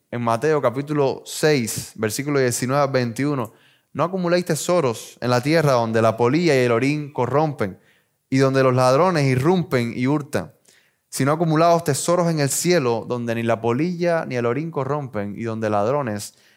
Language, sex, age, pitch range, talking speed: Spanish, male, 20-39, 120-160 Hz, 160 wpm